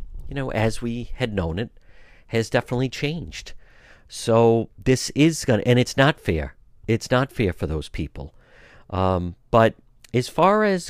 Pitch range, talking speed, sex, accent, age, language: 90-125 Hz, 165 wpm, male, American, 50-69, English